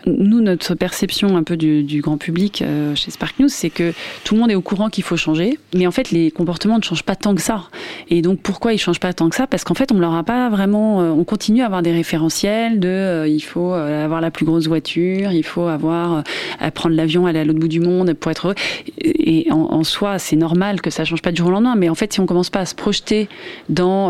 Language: French